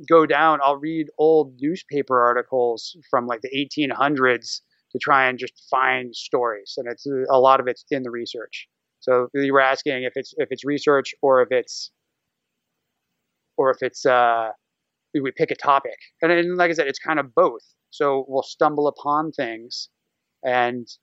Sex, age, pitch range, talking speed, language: male, 30-49, 130-150 Hz, 170 wpm, English